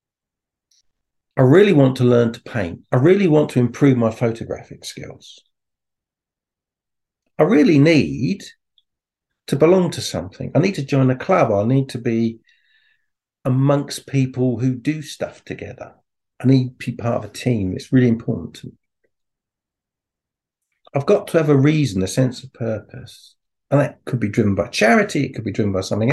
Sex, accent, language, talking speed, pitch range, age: male, British, English, 170 wpm, 110-140 Hz, 50-69